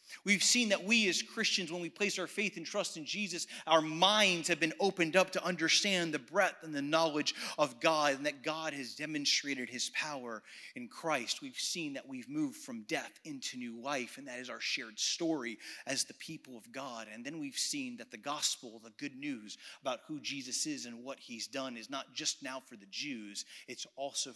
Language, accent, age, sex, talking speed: English, American, 30-49, male, 215 wpm